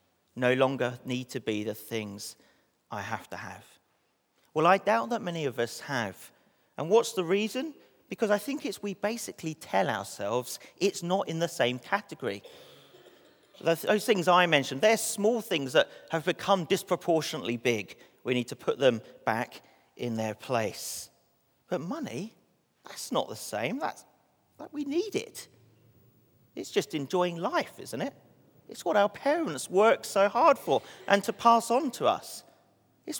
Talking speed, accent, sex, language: 160 wpm, British, male, English